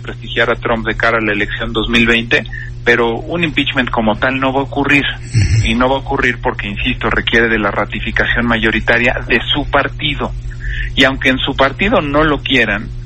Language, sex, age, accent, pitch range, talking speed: Spanish, male, 40-59, Mexican, 115-135 Hz, 190 wpm